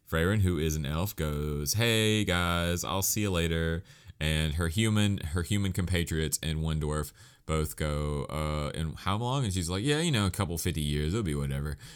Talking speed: 200 wpm